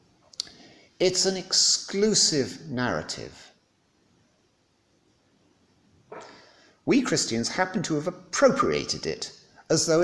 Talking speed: 80 wpm